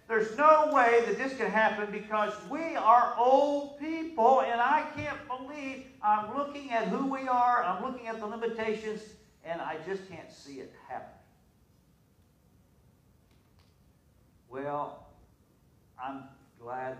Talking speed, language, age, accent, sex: 130 wpm, English, 50-69, American, male